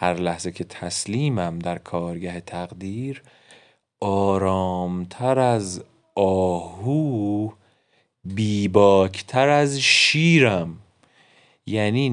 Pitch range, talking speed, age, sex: 95-130 Hz, 70 wpm, 30-49, male